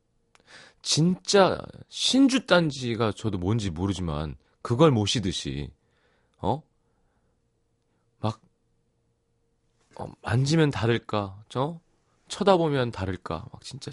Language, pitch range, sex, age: Korean, 100-160 Hz, male, 30-49